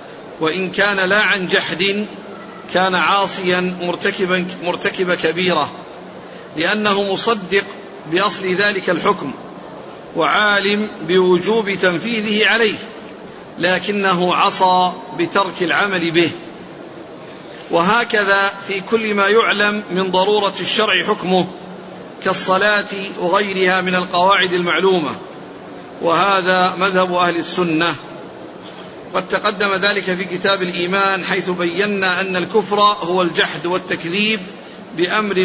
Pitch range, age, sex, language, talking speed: 180-200 Hz, 50-69, male, Arabic, 95 wpm